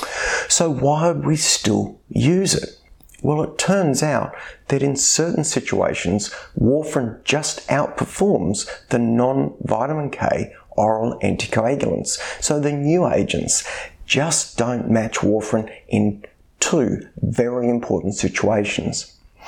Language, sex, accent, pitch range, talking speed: English, male, Australian, 100-140 Hz, 110 wpm